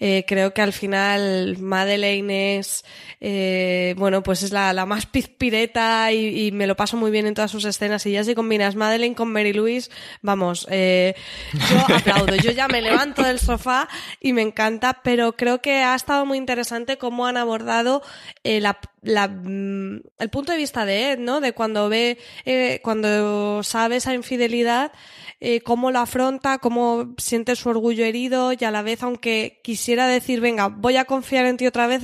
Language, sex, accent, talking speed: Spanish, female, Spanish, 185 wpm